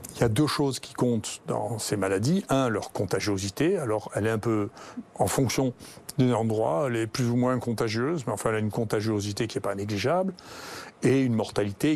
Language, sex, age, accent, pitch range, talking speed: French, male, 40-59, French, 110-130 Hz, 205 wpm